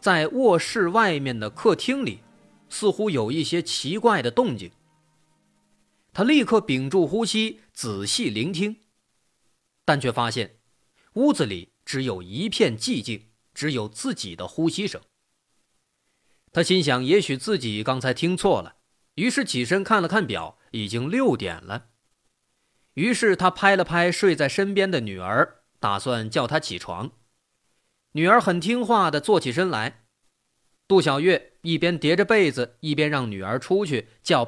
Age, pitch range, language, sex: 30-49, 110-190 Hz, Chinese, male